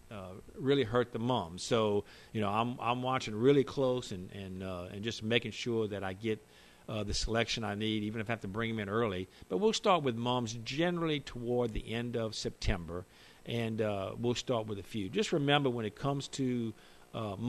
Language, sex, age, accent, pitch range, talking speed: English, male, 50-69, American, 105-130 Hz, 215 wpm